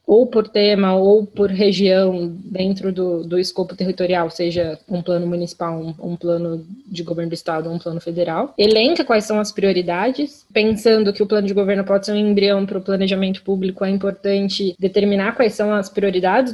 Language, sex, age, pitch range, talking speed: Portuguese, female, 20-39, 195-245 Hz, 185 wpm